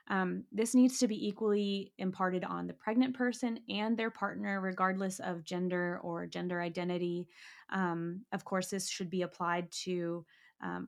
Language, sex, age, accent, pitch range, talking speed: English, female, 20-39, American, 175-210 Hz, 160 wpm